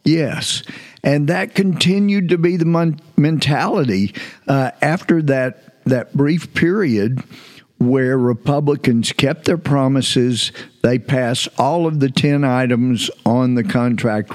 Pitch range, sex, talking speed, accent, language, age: 110-135 Hz, male, 125 wpm, American, English, 50-69